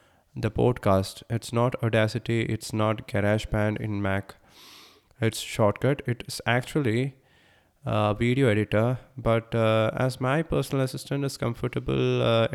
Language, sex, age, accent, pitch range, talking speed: English, male, 20-39, Indian, 110-125 Hz, 130 wpm